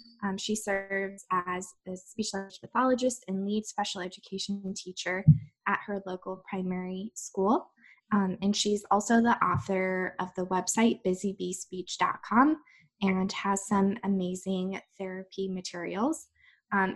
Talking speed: 120 wpm